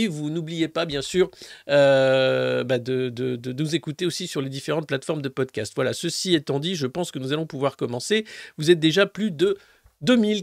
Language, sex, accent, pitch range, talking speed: French, male, French, 140-200 Hz, 200 wpm